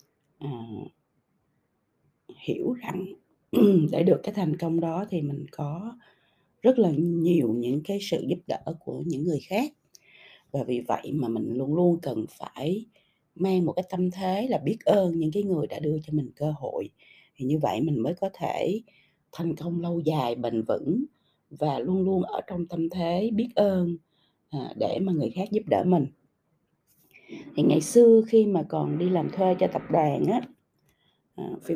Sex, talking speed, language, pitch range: female, 175 wpm, Vietnamese, 155-200 Hz